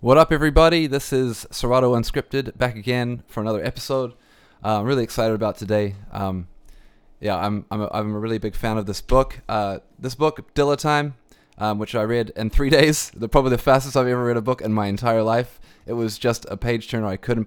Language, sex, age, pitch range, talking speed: English, male, 20-39, 105-120 Hz, 215 wpm